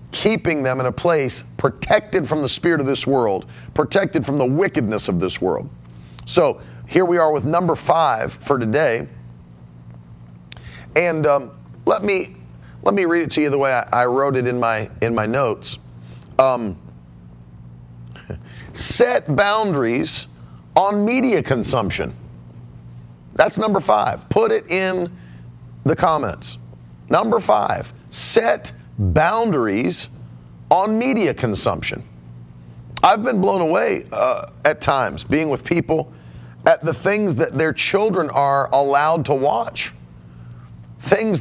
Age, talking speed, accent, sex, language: 40-59, 130 wpm, American, male, English